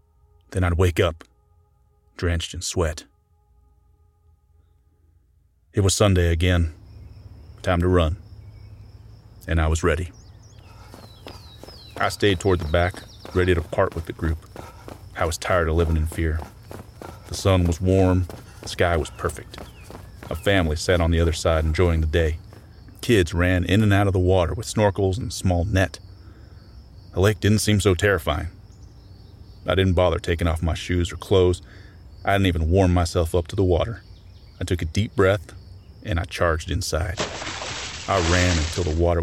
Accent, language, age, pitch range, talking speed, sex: American, English, 30-49, 85-100 Hz, 160 wpm, male